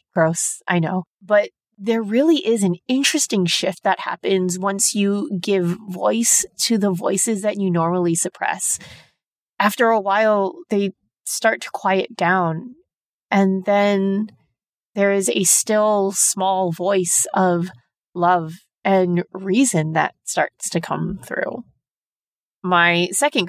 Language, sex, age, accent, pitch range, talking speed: English, female, 30-49, American, 175-205 Hz, 130 wpm